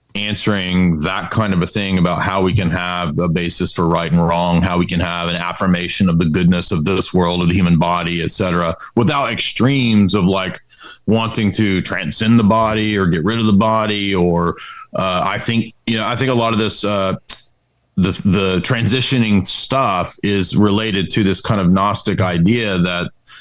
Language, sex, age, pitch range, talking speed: English, male, 40-59, 85-105 Hz, 190 wpm